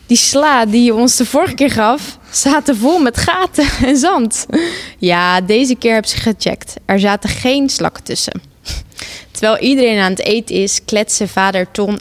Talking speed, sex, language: 175 wpm, female, Dutch